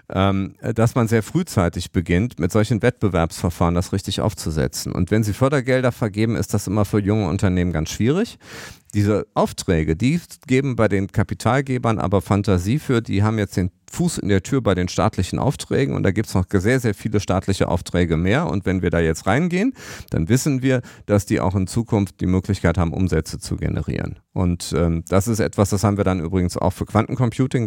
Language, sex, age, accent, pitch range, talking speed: German, male, 40-59, German, 90-110 Hz, 195 wpm